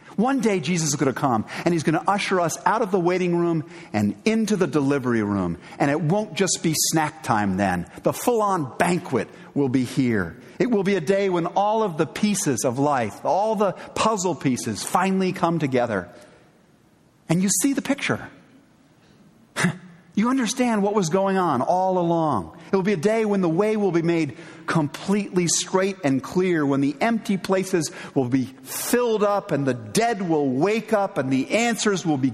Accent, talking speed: American, 190 wpm